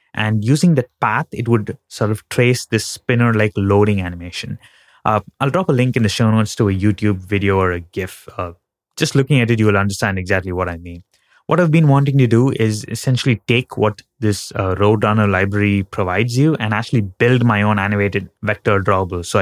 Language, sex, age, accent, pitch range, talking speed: English, male, 20-39, Indian, 100-125 Hz, 205 wpm